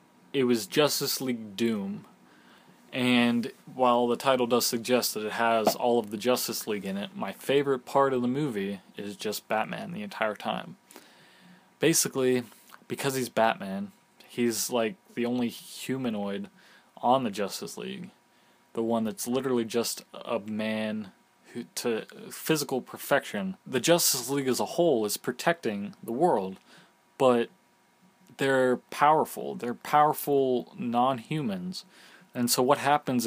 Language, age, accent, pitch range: English, 20-39, American, 115-135 Hz